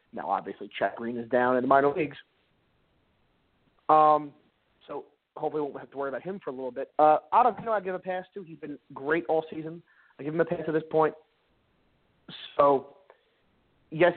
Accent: American